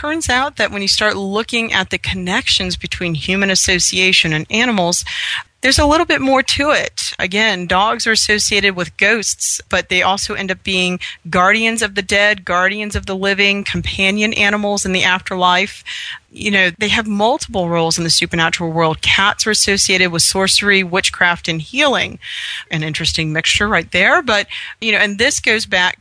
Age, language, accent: 40-59, English, American